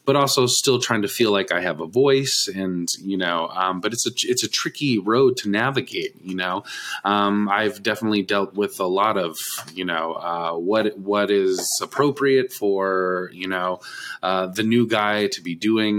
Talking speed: 190 wpm